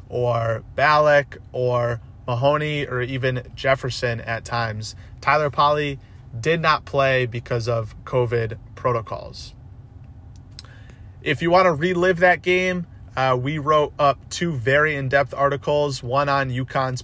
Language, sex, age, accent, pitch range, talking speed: English, male, 30-49, American, 115-140 Hz, 125 wpm